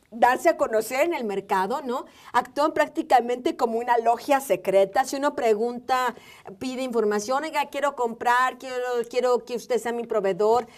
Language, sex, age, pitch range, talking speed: Spanish, female, 40-59, 205-245 Hz, 155 wpm